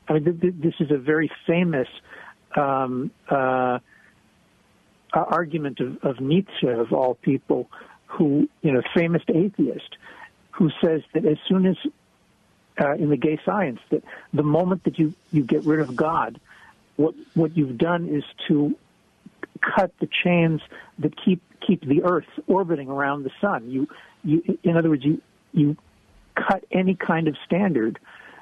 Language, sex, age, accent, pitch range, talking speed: English, male, 60-79, American, 140-180 Hz, 150 wpm